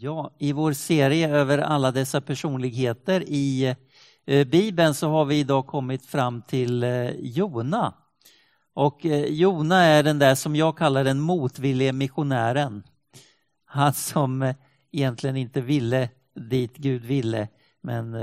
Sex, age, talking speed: male, 50-69, 125 wpm